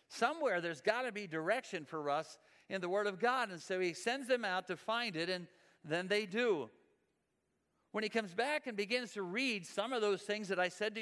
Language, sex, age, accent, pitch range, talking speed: English, male, 50-69, American, 170-220 Hz, 230 wpm